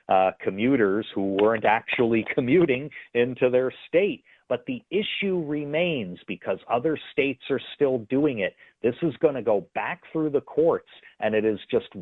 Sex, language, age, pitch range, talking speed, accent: male, English, 40-59, 105-170 Hz, 165 wpm, American